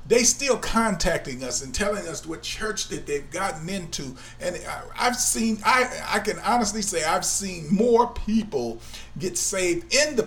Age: 40-59